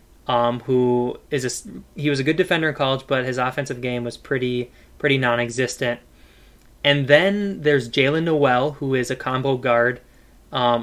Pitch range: 120-135 Hz